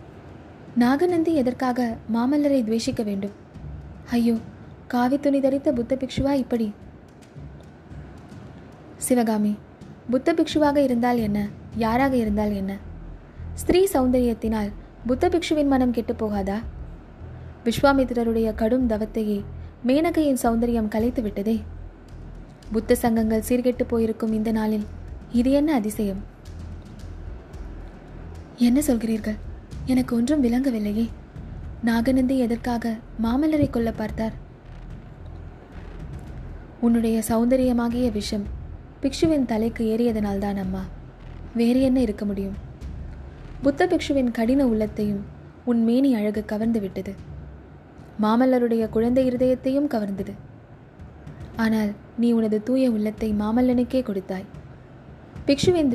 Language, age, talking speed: Tamil, 20-39, 90 wpm